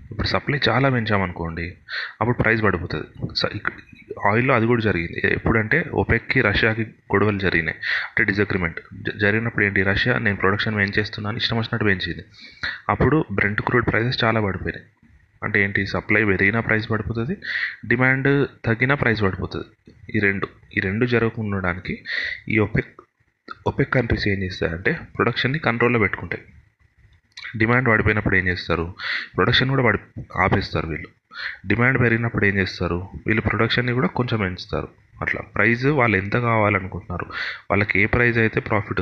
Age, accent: 30-49, native